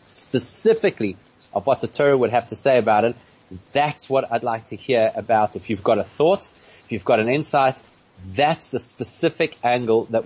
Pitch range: 110-145 Hz